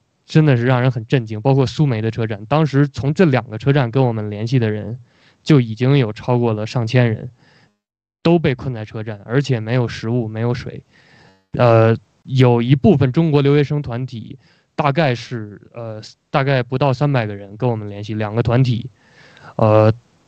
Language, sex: Chinese, male